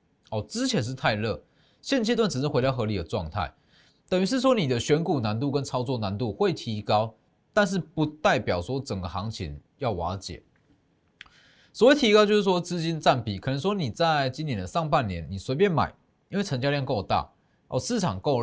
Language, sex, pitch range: Chinese, male, 110-170 Hz